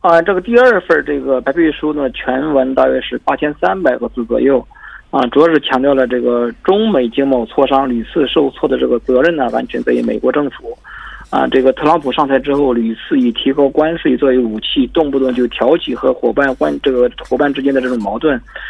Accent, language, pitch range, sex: Chinese, Korean, 130-185 Hz, male